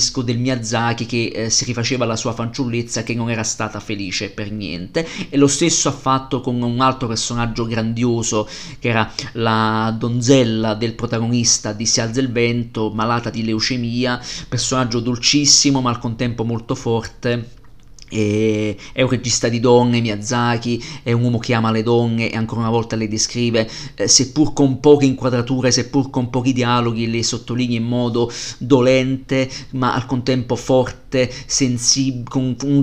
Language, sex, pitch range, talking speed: Italian, male, 115-130 Hz, 155 wpm